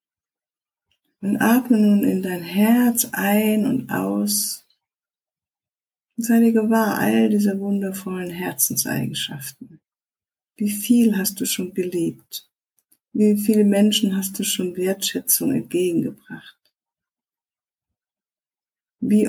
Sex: female